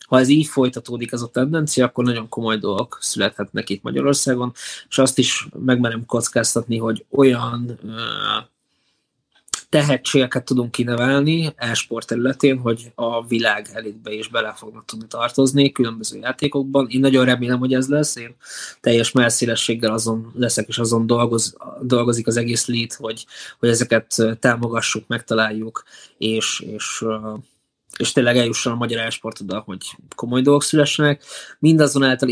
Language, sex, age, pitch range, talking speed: Hungarian, male, 20-39, 115-130 Hz, 140 wpm